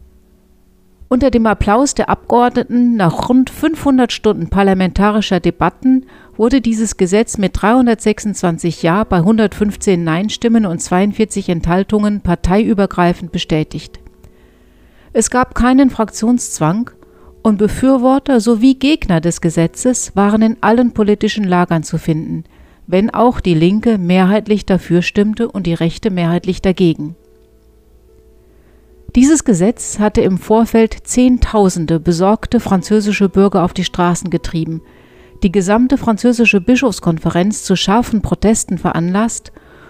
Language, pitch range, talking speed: German, 170-225 Hz, 115 wpm